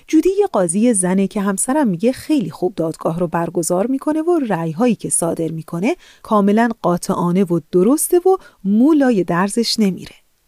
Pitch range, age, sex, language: 175-250 Hz, 30-49, female, Persian